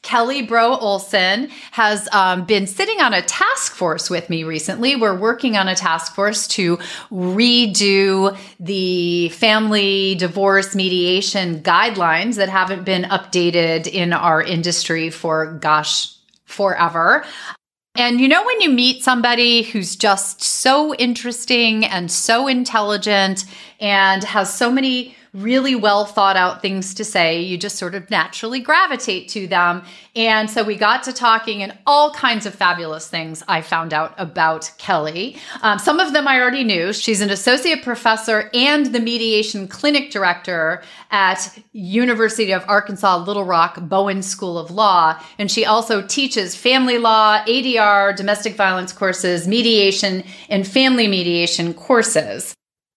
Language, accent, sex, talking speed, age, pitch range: English, American, female, 145 wpm, 30-49, 175-230 Hz